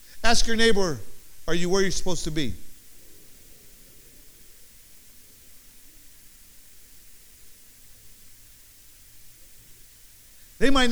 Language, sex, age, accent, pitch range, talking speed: English, male, 50-69, American, 200-265 Hz, 65 wpm